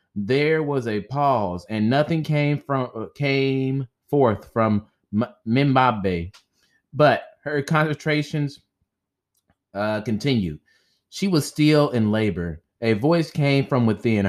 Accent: American